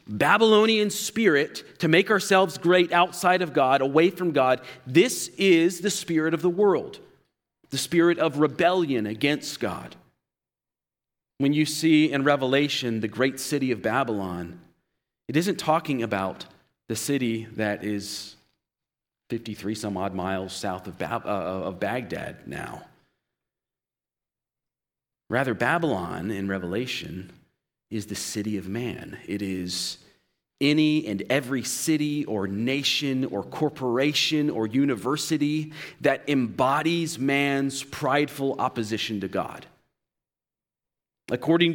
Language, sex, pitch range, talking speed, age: English, male, 105-155 Hz, 110 wpm, 40-59